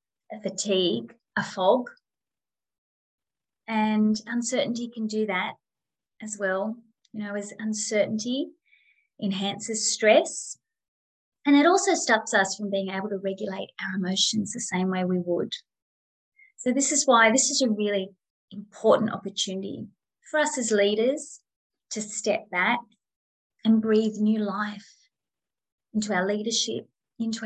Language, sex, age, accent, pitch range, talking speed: English, female, 20-39, Australian, 195-240 Hz, 130 wpm